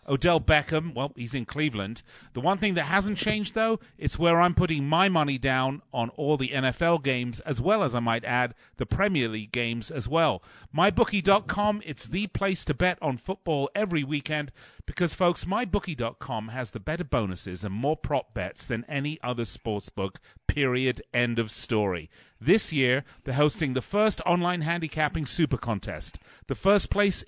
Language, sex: English, male